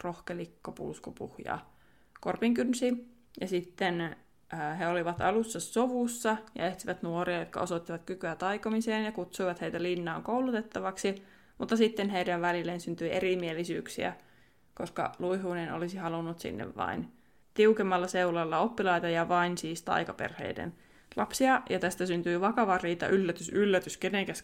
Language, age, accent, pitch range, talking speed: Finnish, 20-39, native, 175-205 Hz, 125 wpm